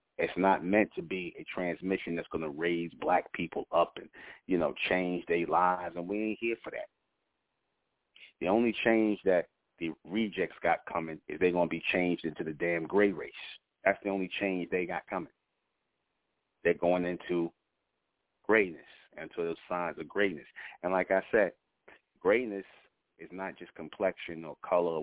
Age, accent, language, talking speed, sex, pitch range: 40-59, American, English, 175 wpm, male, 85-100 Hz